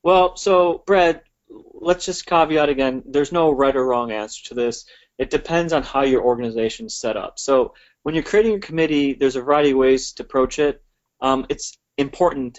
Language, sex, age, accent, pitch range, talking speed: English, male, 30-49, American, 125-140 Hz, 195 wpm